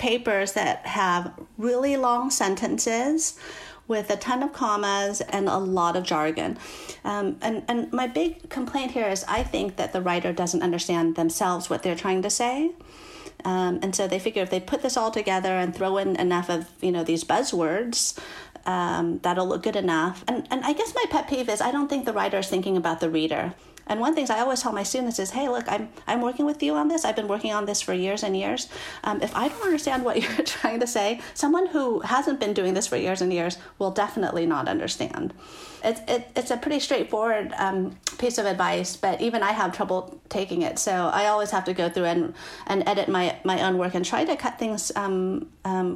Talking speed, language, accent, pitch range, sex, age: 220 wpm, English, American, 185-255 Hz, female, 40-59